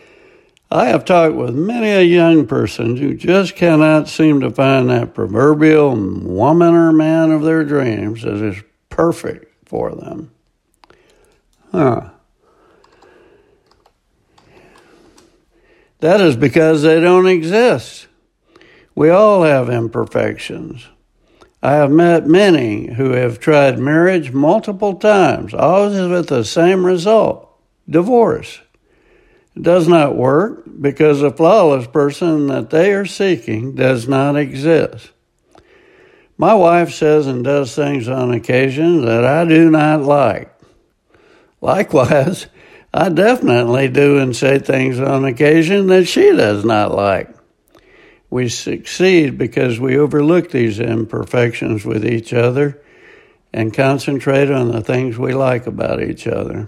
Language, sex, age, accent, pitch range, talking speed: English, male, 60-79, American, 135-190 Hz, 125 wpm